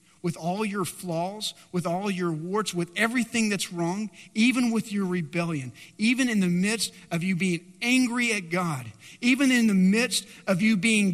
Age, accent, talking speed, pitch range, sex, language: 40-59, American, 180 wpm, 170-230 Hz, male, English